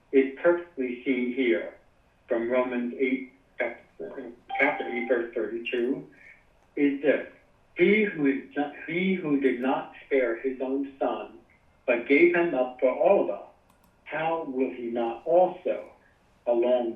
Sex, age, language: male, 60-79, English